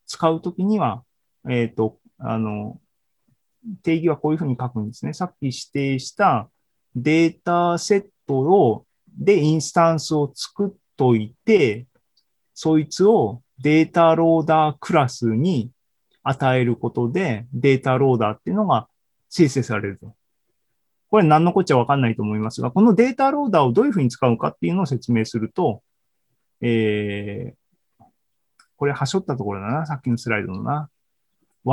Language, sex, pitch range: Japanese, male, 120-170 Hz